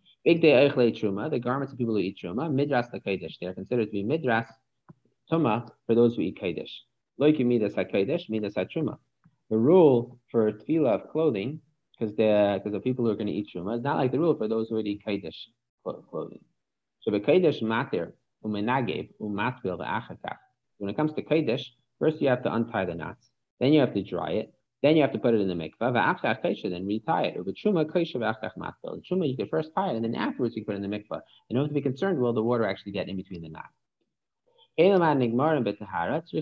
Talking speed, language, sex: 175 wpm, English, male